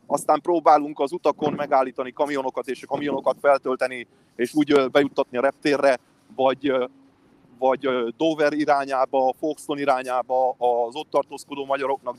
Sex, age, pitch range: male, 30-49, 135-160 Hz